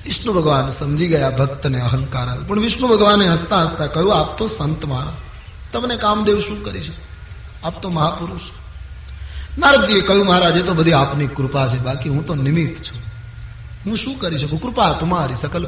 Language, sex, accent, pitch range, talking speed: Gujarati, male, native, 115-170 Hz, 165 wpm